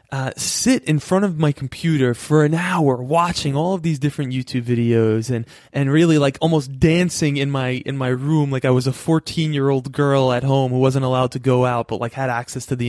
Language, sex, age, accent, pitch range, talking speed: English, male, 20-39, American, 120-150 Hz, 235 wpm